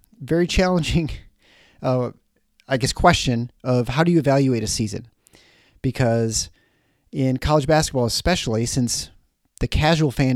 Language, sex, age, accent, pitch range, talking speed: English, male, 30-49, American, 110-135 Hz, 125 wpm